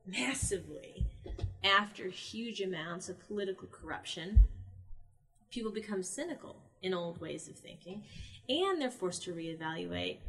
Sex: female